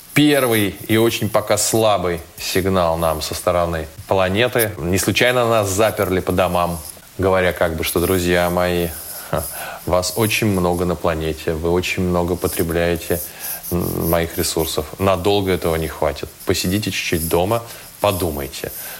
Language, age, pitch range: Russian, 20-39, 85-100 Hz